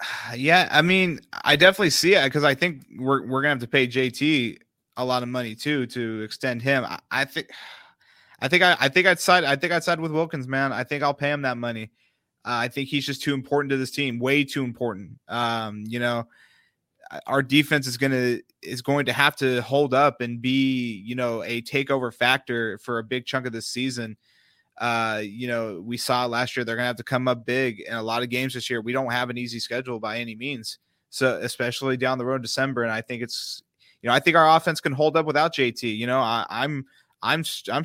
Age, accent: 20-39, American